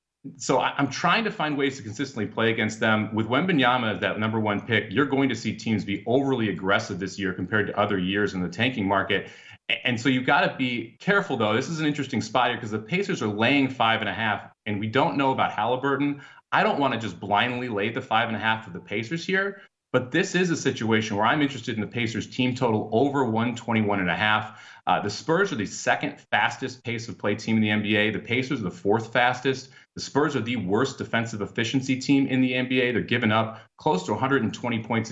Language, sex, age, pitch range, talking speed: English, male, 30-49, 110-135 Hz, 230 wpm